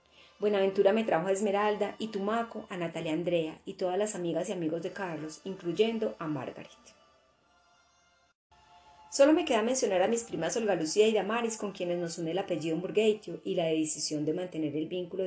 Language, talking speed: Spanish, 180 wpm